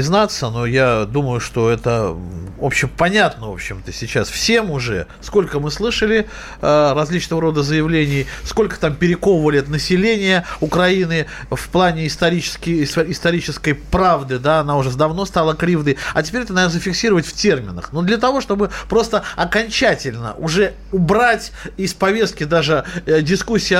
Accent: native